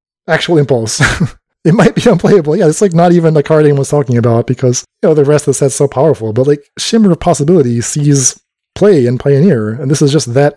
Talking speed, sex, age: 235 wpm, male, 20-39